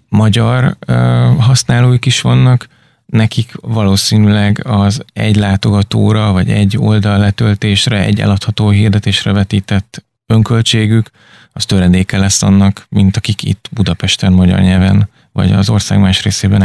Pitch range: 100-120 Hz